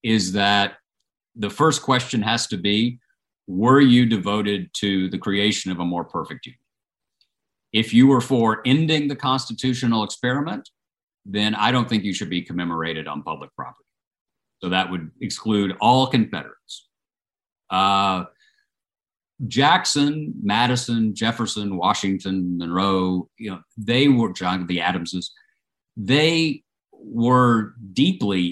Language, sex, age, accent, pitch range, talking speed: English, male, 50-69, American, 95-130 Hz, 120 wpm